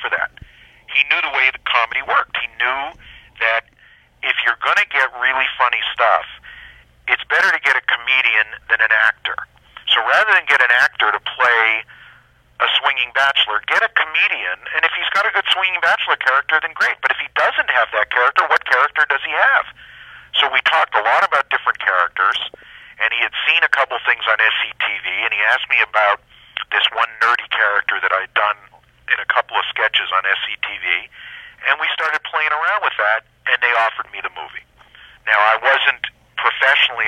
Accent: American